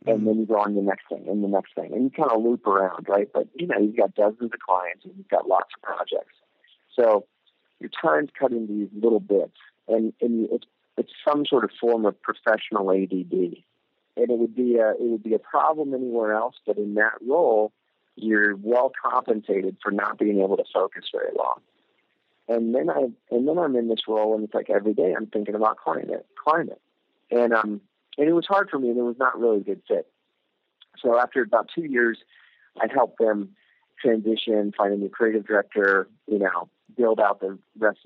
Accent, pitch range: American, 100-120 Hz